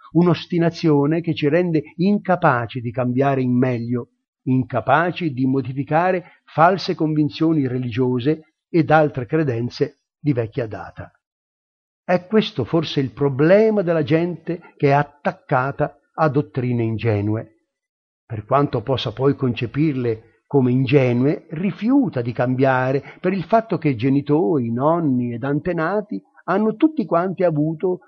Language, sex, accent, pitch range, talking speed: Italian, male, native, 130-175 Hz, 120 wpm